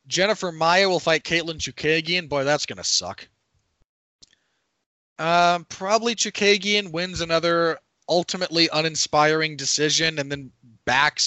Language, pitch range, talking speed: English, 125-165 Hz, 115 wpm